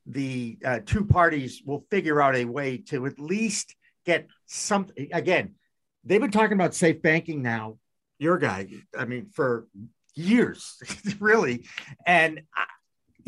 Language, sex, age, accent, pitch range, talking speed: English, male, 50-69, American, 145-185 Hz, 140 wpm